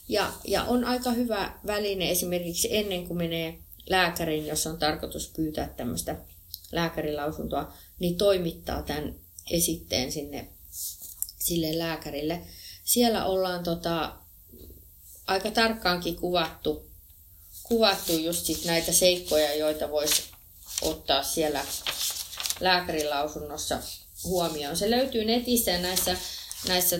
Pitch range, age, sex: 145-185 Hz, 30-49, female